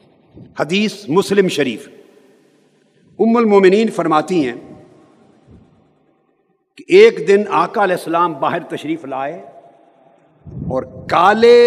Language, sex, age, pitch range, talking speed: Urdu, male, 50-69, 170-225 Hz, 95 wpm